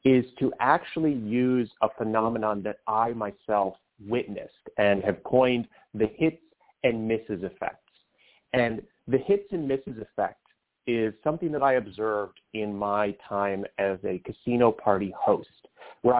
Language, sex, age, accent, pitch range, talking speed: English, male, 30-49, American, 110-150 Hz, 140 wpm